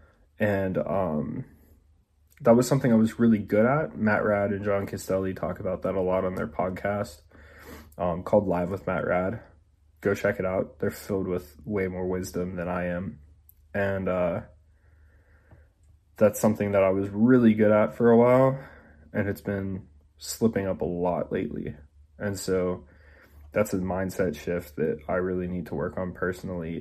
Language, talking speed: English, 170 wpm